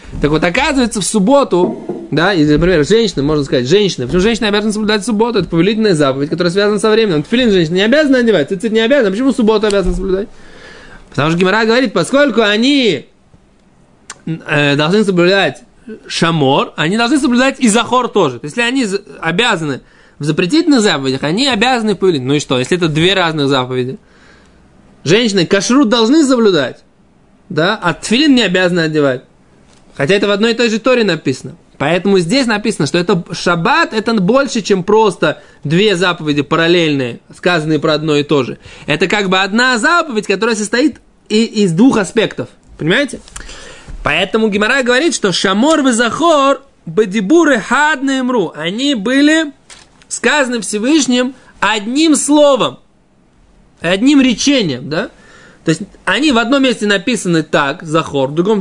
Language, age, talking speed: Russian, 20-39, 155 wpm